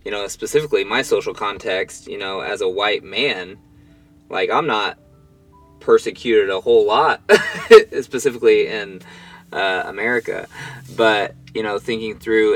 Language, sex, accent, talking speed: English, male, American, 135 wpm